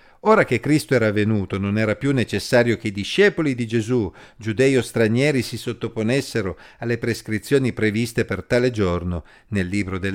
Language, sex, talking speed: Italian, male, 165 wpm